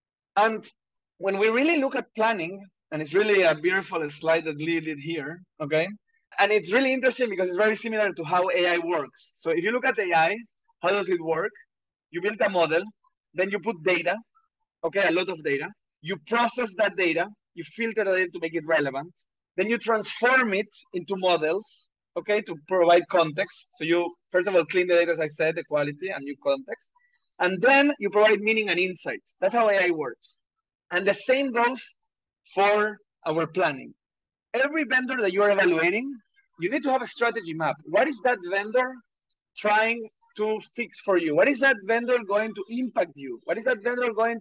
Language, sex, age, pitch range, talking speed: English, male, 30-49, 175-240 Hz, 195 wpm